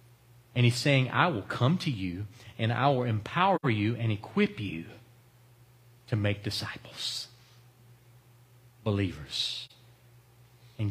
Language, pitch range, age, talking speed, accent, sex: English, 120-140 Hz, 40-59, 115 wpm, American, male